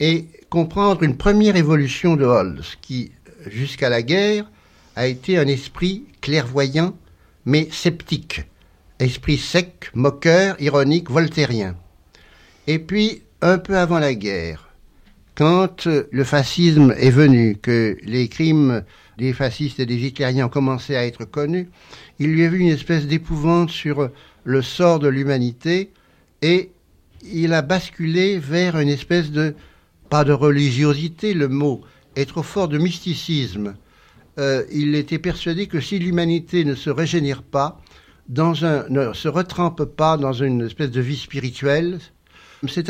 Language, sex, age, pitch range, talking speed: French, male, 60-79, 125-165 Hz, 145 wpm